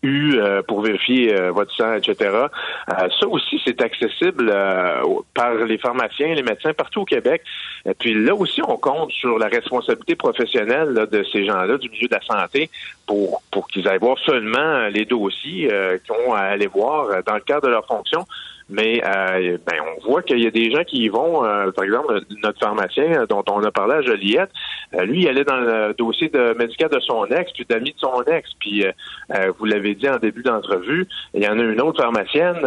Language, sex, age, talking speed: French, male, 40-59, 215 wpm